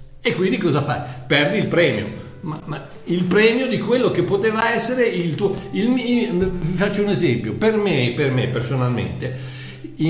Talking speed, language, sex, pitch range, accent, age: 170 wpm, Italian, male, 125-185 Hz, native, 60-79